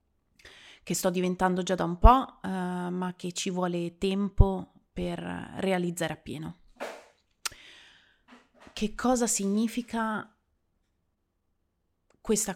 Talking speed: 90 wpm